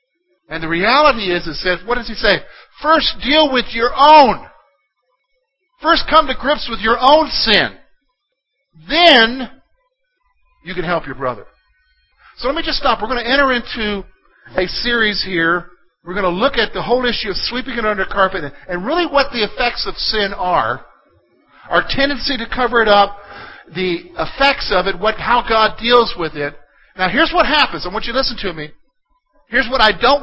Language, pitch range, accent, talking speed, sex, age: English, 175-270 Hz, American, 185 wpm, male, 50-69